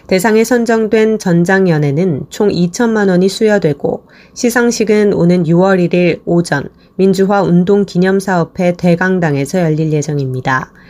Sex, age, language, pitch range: female, 20-39, Korean, 170-210 Hz